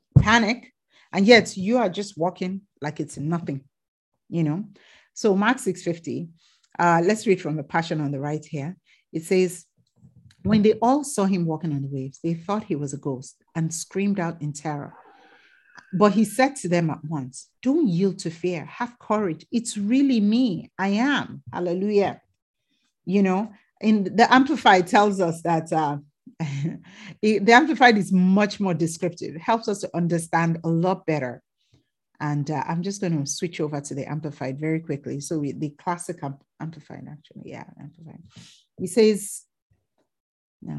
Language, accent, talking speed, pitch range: English, Nigerian, 165 wpm, 155-210 Hz